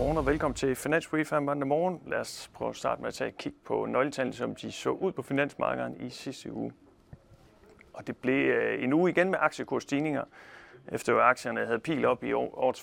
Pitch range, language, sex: 105-140 Hz, Danish, male